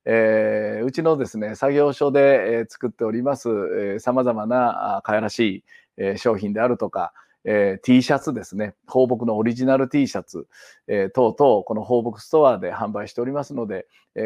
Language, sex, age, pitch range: Japanese, male, 40-59, 110-155 Hz